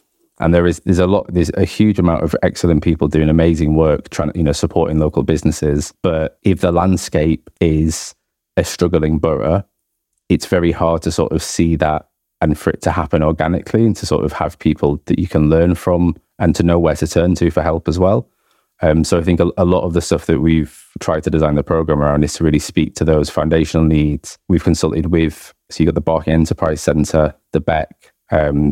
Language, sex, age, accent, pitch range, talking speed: English, male, 20-39, British, 75-85 Hz, 220 wpm